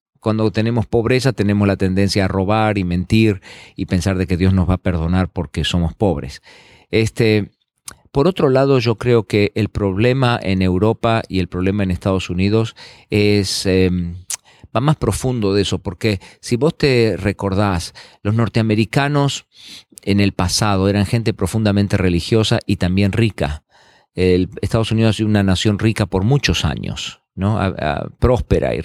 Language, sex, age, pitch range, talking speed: Spanish, male, 40-59, 90-110 Hz, 165 wpm